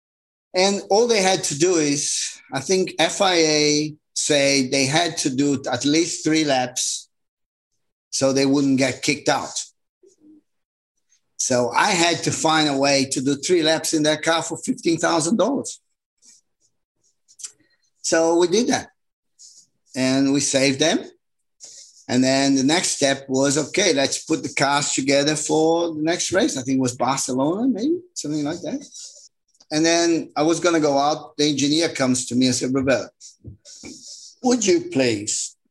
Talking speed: 155 wpm